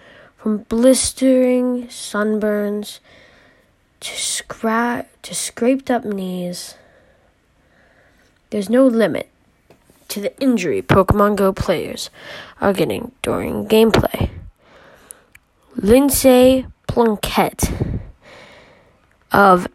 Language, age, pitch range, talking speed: English, 20-39, 195-245 Hz, 70 wpm